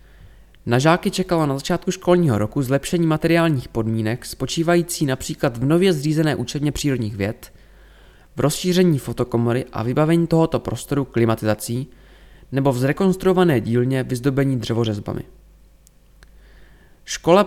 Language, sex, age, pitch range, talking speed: Czech, male, 20-39, 120-165 Hz, 115 wpm